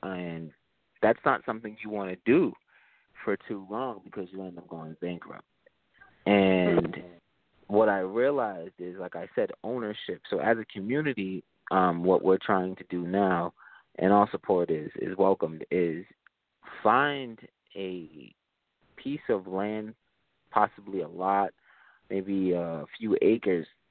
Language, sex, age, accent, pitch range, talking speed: English, male, 20-39, American, 90-100 Hz, 140 wpm